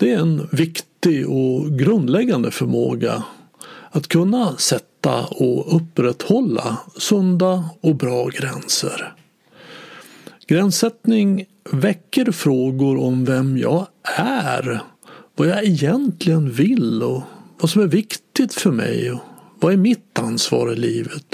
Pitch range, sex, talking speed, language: 145-220 Hz, male, 115 wpm, Swedish